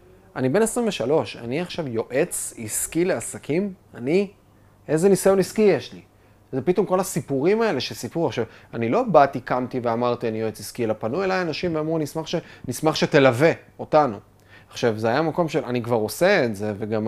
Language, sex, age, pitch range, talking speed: Hebrew, male, 30-49, 110-165 Hz, 175 wpm